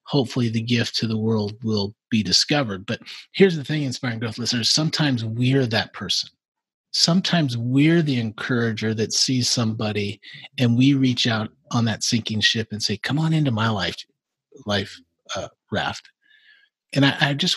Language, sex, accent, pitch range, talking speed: English, male, American, 110-145 Hz, 165 wpm